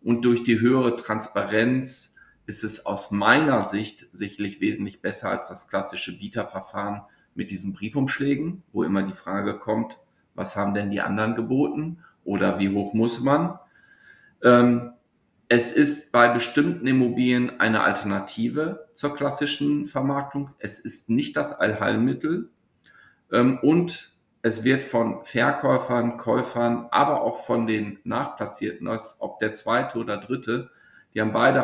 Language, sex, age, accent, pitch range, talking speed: German, male, 50-69, German, 105-130 Hz, 135 wpm